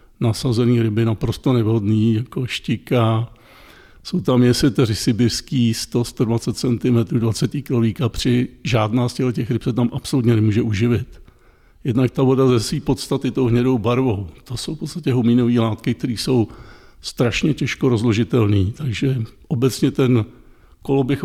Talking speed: 135 wpm